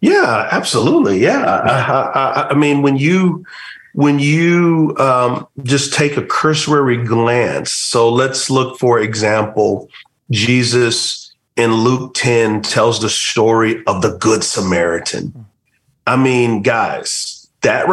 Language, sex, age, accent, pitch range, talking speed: English, male, 40-59, American, 120-145 Hz, 125 wpm